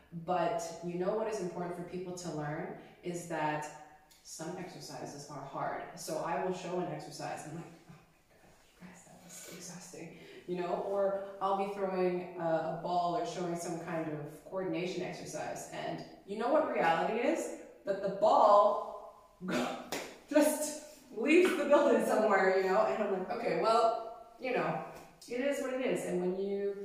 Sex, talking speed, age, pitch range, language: female, 180 wpm, 20-39, 165-195 Hz, German